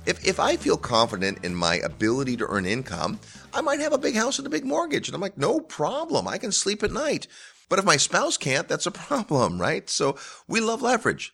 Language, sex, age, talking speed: English, male, 30-49, 235 wpm